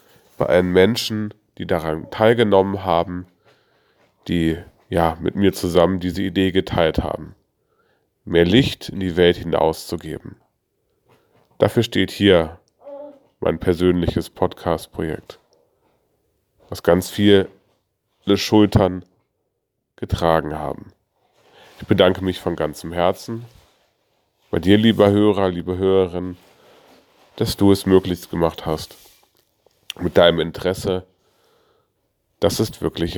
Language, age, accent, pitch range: German, 30-49, German, 85-105 Hz